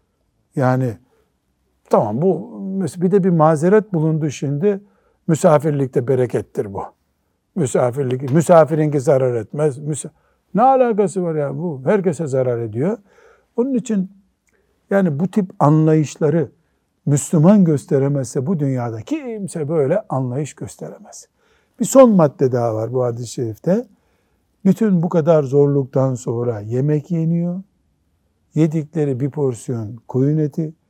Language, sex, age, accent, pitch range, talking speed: Turkish, male, 60-79, native, 120-165 Hz, 115 wpm